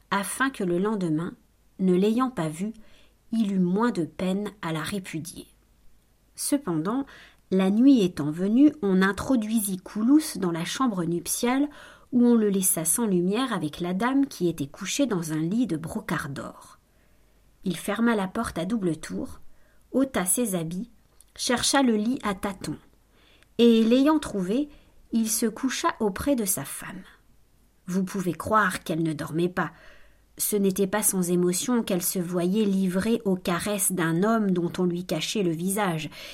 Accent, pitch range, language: French, 175-225 Hz, French